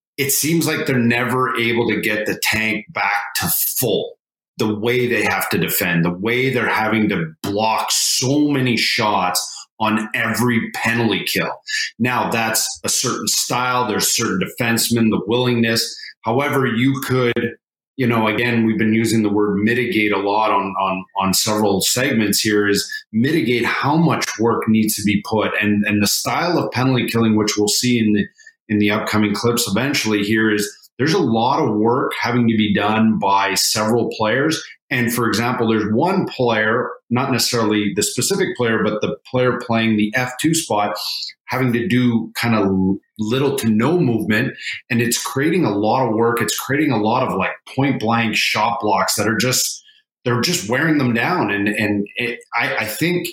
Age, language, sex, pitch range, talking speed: 30-49, English, male, 105-125 Hz, 180 wpm